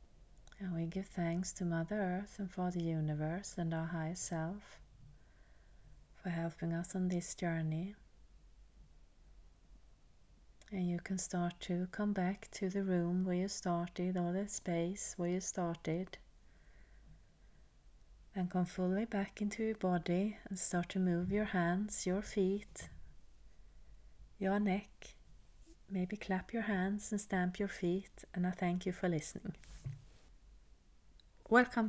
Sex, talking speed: female, 135 wpm